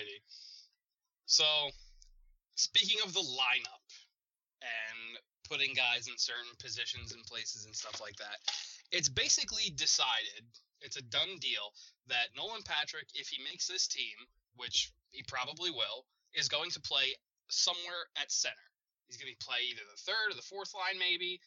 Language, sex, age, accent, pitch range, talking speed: English, male, 20-39, American, 120-190 Hz, 155 wpm